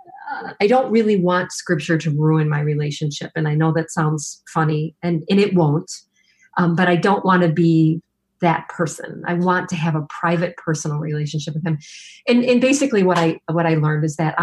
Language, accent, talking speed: English, American, 200 wpm